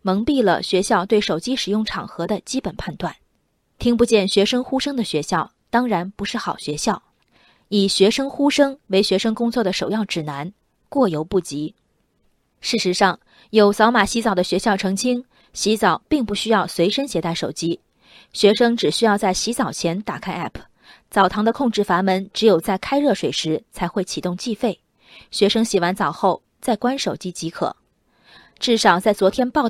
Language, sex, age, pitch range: Chinese, female, 20-39, 180-240 Hz